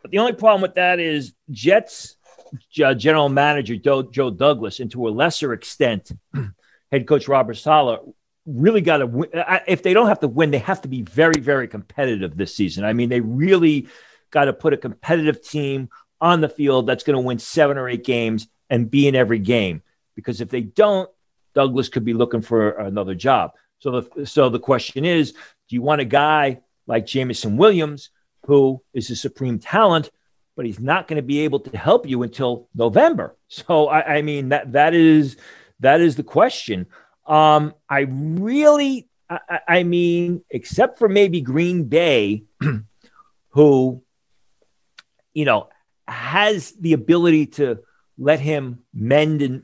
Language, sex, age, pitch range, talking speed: English, male, 40-59, 125-165 Hz, 170 wpm